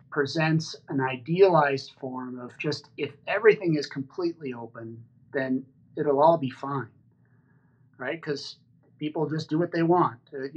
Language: English